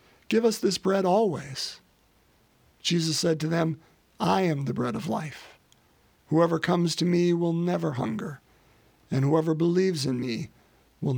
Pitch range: 135-175 Hz